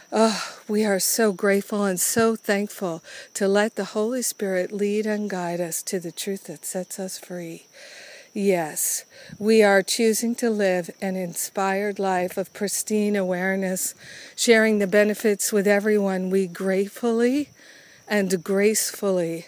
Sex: female